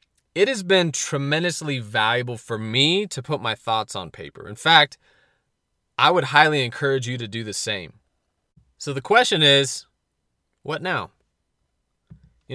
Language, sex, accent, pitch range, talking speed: English, male, American, 120-160 Hz, 150 wpm